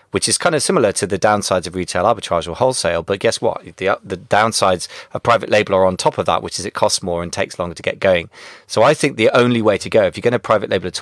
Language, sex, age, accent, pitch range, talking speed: English, male, 30-49, British, 90-110 Hz, 290 wpm